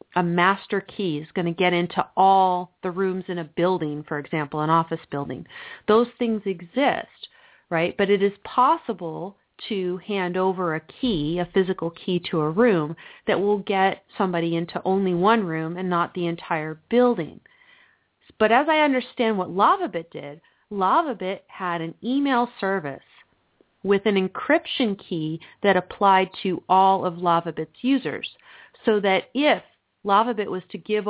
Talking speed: 155 wpm